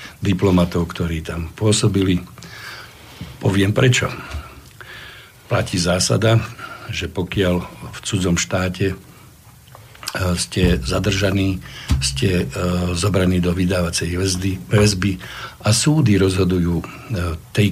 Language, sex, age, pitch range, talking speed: Slovak, male, 60-79, 90-110 Hz, 80 wpm